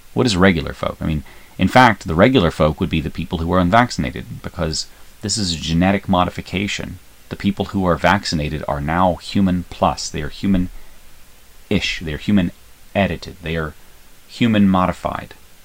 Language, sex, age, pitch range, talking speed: English, male, 30-49, 75-95 Hz, 160 wpm